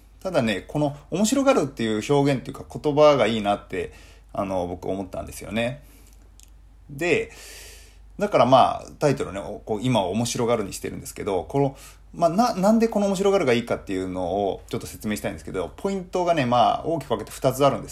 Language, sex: Japanese, male